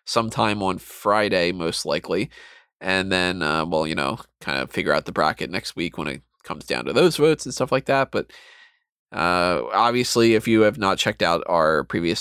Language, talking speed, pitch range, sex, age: English, 200 wpm, 105-135 Hz, male, 20-39